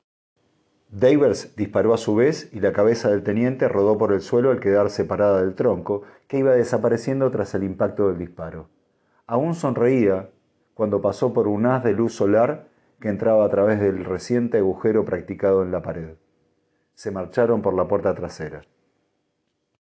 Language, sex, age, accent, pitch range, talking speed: Spanish, male, 40-59, Argentinian, 95-120 Hz, 160 wpm